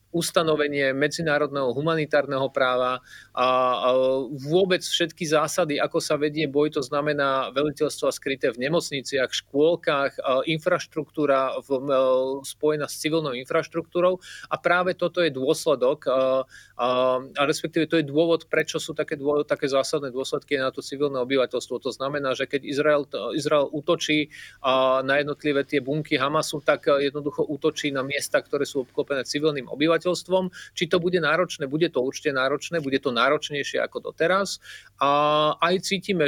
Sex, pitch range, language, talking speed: male, 135-160 Hz, Slovak, 140 wpm